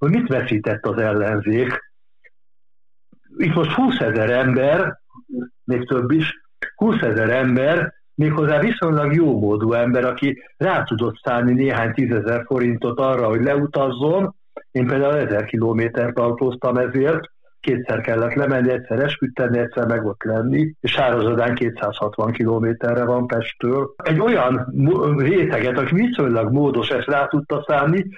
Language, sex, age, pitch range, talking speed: Hungarian, male, 60-79, 120-150 Hz, 135 wpm